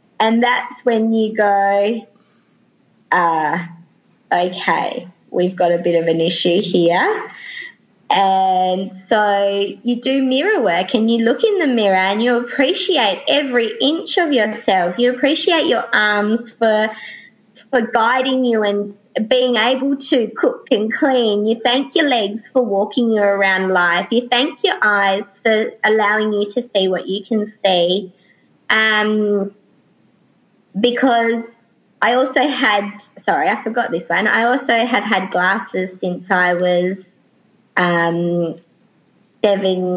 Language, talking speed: English, 135 wpm